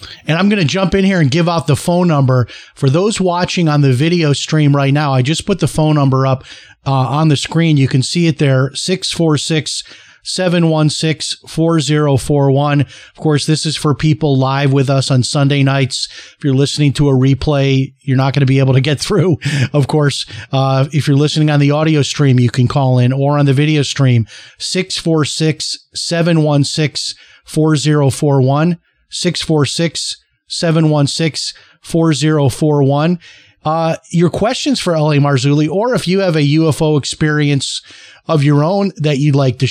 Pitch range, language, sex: 140-165 Hz, English, male